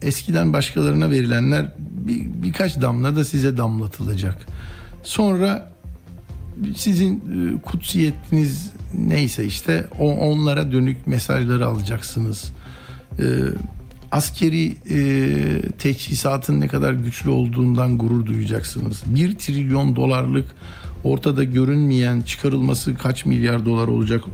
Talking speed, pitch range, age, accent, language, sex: 90 wpm, 110-145 Hz, 60-79, native, Turkish, male